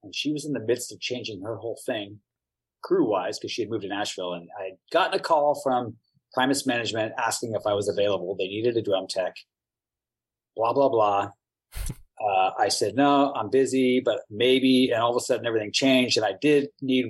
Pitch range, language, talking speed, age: 115-170 Hz, English, 205 wpm, 30-49